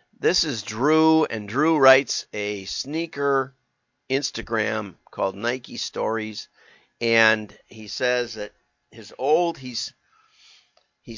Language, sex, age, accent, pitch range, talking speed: English, male, 50-69, American, 110-140 Hz, 105 wpm